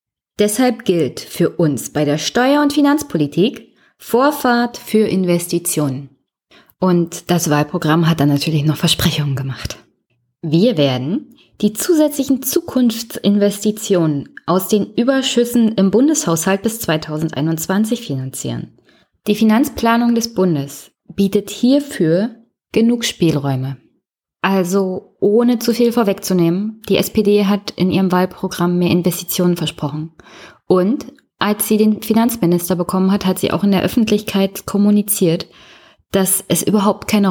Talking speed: 120 wpm